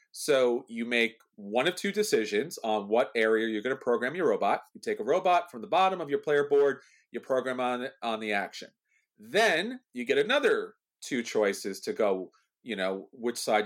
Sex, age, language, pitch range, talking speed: male, 40-59, English, 120-185 Hz, 200 wpm